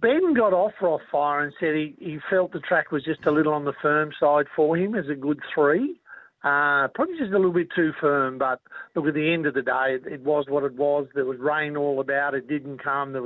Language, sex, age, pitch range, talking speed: English, male, 50-69, 140-165 Hz, 250 wpm